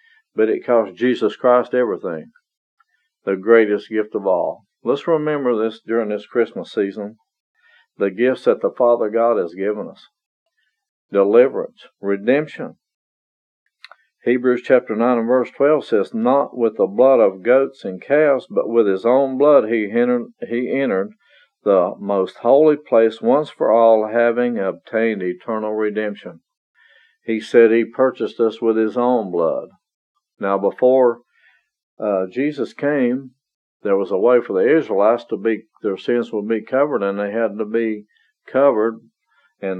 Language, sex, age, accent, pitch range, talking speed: English, male, 50-69, American, 110-140 Hz, 150 wpm